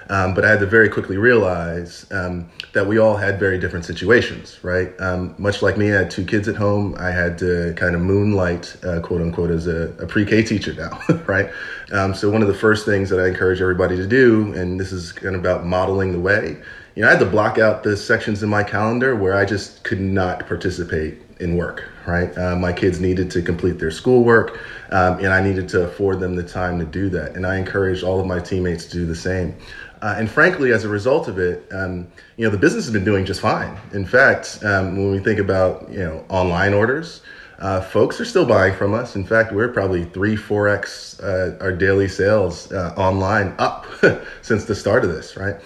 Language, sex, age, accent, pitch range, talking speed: English, male, 30-49, American, 90-105 Hz, 225 wpm